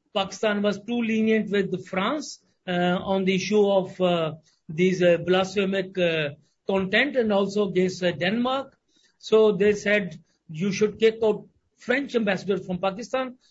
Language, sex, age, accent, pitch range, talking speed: English, male, 50-69, Indian, 195-240 Hz, 145 wpm